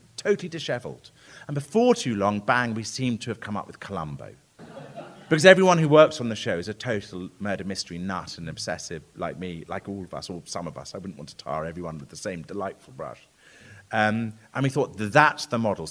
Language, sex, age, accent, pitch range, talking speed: English, male, 30-49, British, 95-135 Hz, 220 wpm